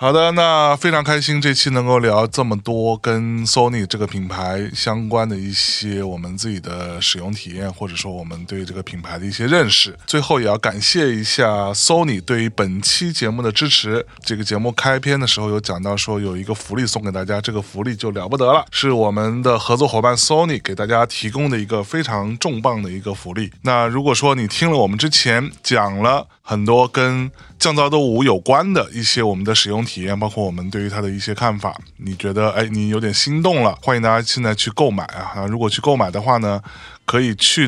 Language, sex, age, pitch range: Chinese, male, 20-39, 100-135 Hz